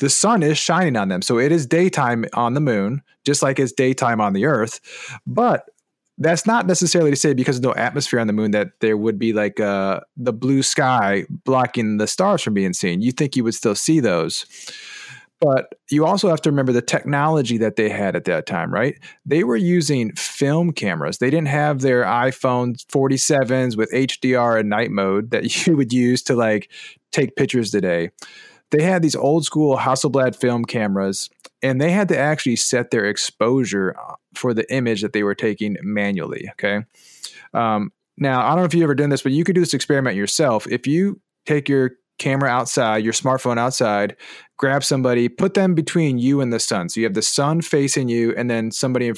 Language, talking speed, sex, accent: English, 205 wpm, male, American